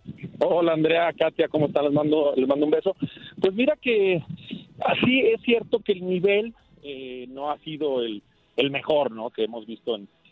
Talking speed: 185 wpm